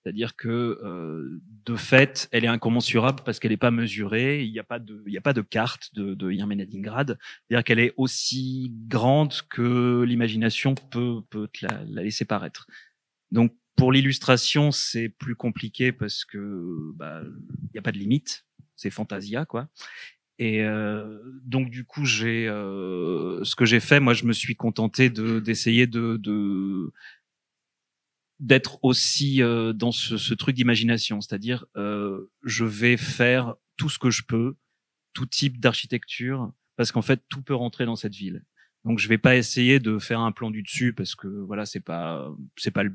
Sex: male